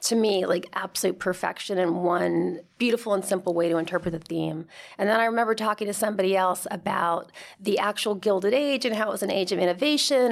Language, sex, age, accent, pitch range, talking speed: English, female, 40-59, American, 175-205 Hz, 210 wpm